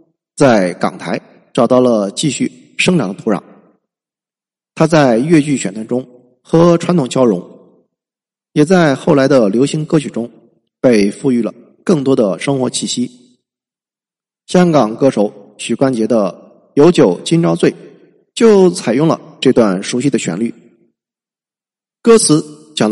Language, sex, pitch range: Chinese, male, 120-150 Hz